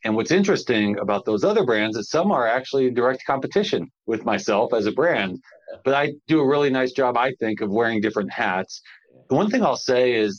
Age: 40-59